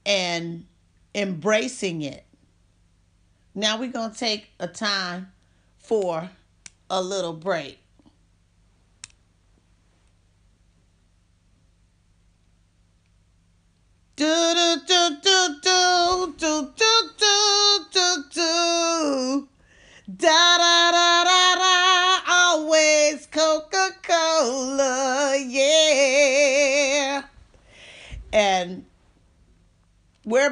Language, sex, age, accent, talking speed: English, female, 40-59, American, 70 wpm